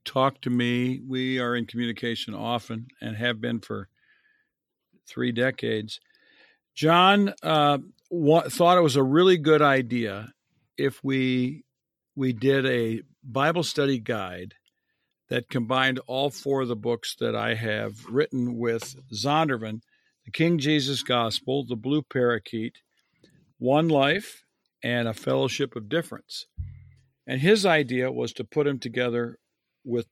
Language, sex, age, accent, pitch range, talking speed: English, male, 50-69, American, 120-145 Hz, 135 wpm